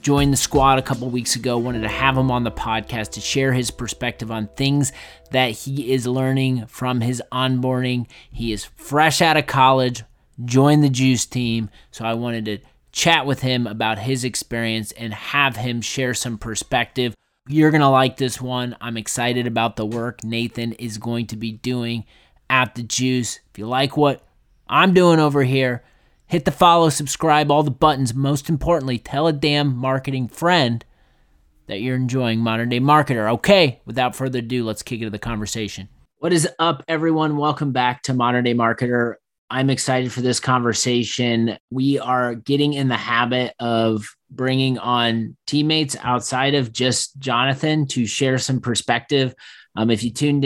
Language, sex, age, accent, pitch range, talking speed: English, male, 30-49, American, 115-135 Hz, 175 wpm